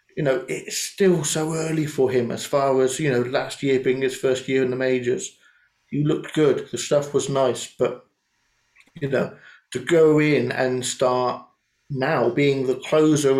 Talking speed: 185 wpm